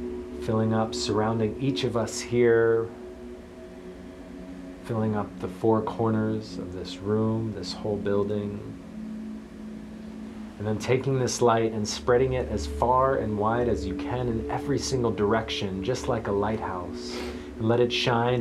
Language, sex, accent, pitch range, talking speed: English, male, American, 100-120 Hz, 145 wpm